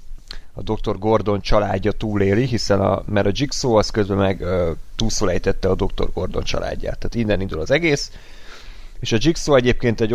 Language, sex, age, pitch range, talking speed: Hungarian, male, 30-49, 95-115 Hz, 165 wpm